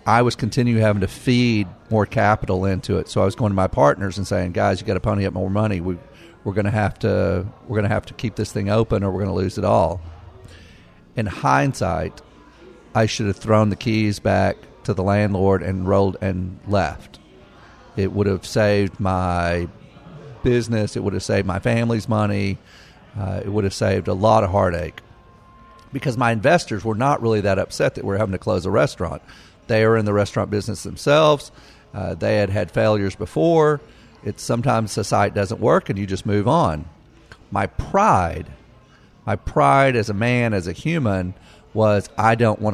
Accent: American